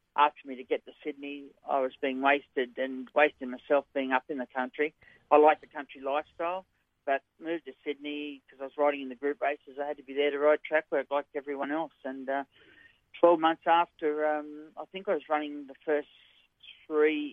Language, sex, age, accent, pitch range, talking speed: English, male, 40-59, Australian, 130-145 Hz, 210 wpm